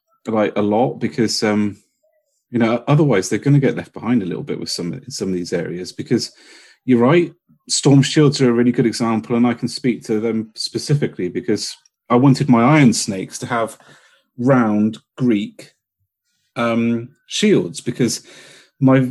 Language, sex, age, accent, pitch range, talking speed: English, male, 30-49, British, 110-140 Hz, 170 wpm